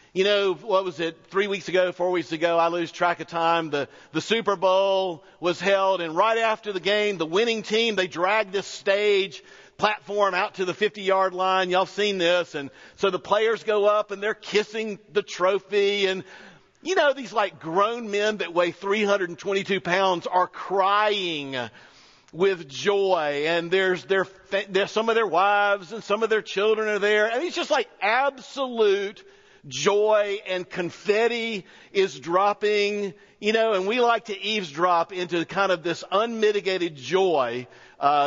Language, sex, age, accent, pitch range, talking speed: English, male, 50-69, American, 175-215 Hz, 170 wpm